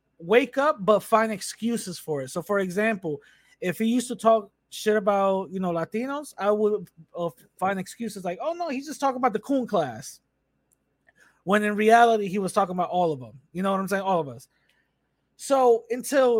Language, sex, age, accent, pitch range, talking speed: English, male, 20-39, American, 170-210 Hz, 200 wpm